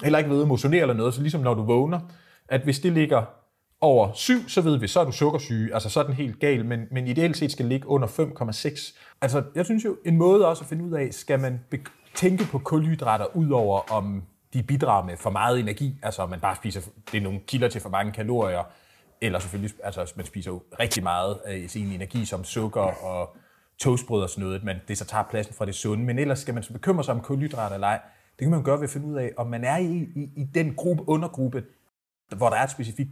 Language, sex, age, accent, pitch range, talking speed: Danish, male, 30-49, native, 110-150 Hz, 250 wpm